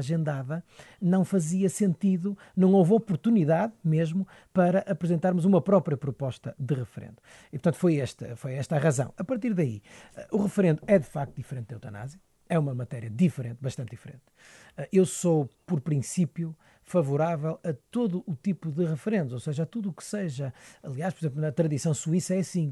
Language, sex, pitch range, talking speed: Portuguese, male, 145-185 Hz, 170 wpm